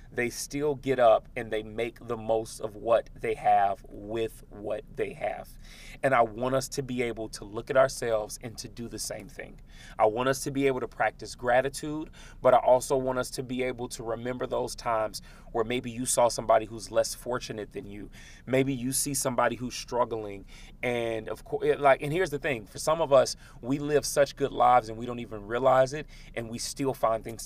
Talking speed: 215 wpm